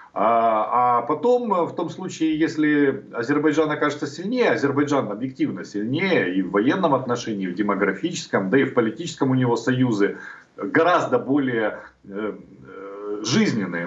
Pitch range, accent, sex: 115-145 Hz, native, male